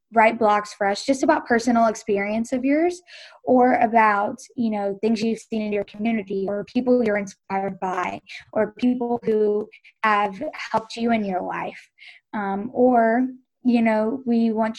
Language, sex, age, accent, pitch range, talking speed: English, female, 10-29, American, 205-245 Hz, 160 wpm